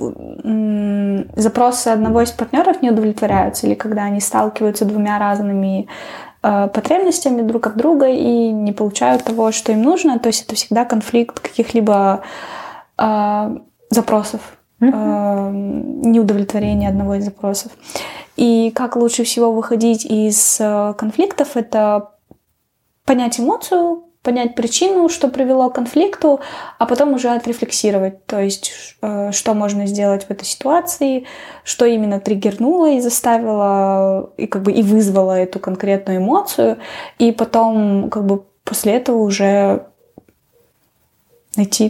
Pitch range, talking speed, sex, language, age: 205-245 Hz, 125 wpm, female, Russian, 20-39